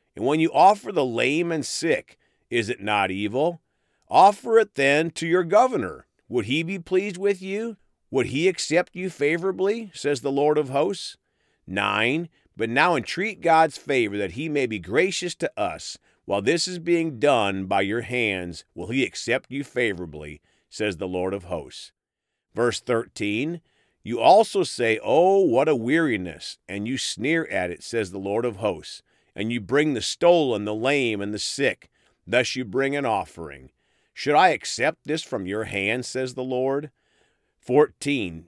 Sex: male